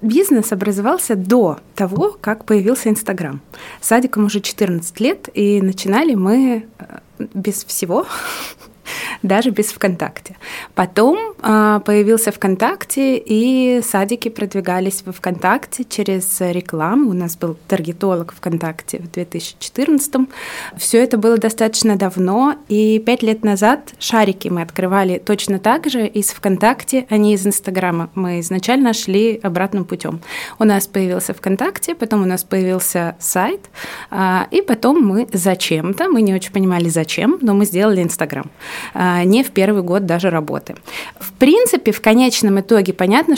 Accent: native